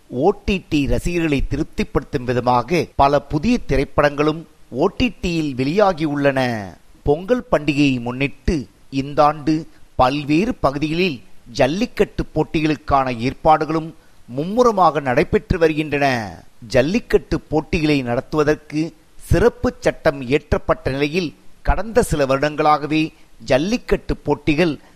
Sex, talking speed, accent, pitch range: male, 85 wpm, native, 135-165 Hz